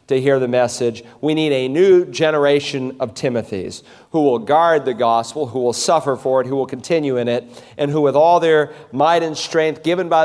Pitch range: 125-155 Hz